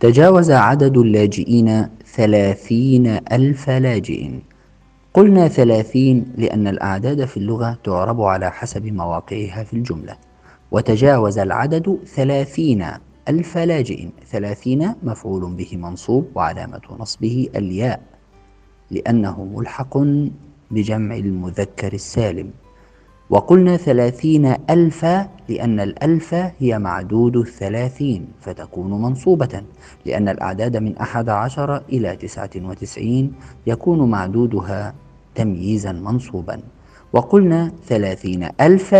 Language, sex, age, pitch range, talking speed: Arabic, male, 50-69, 100-135 Hz, 90 wpm